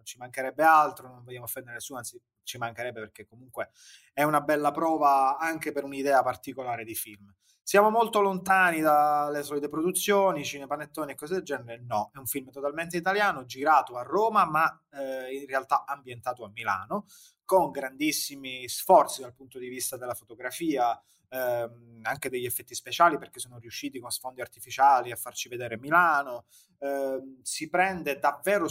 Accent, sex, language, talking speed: native, male, Italian, 160 wpm